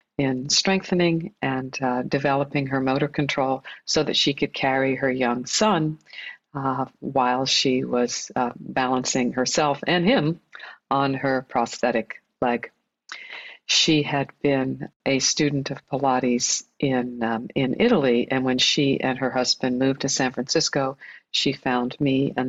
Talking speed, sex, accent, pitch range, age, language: 145 wpm, female, American, 130-155 Hz, 50-69, English